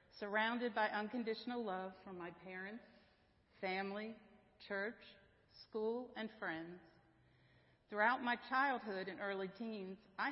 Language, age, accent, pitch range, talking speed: English, 50-69, American, 185-225 Hz, 110 wpm